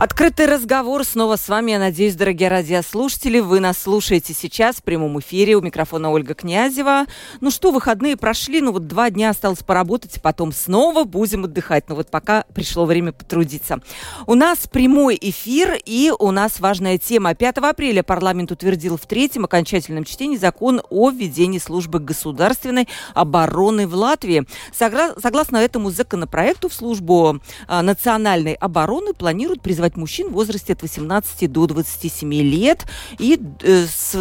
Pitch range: 170-235 Hz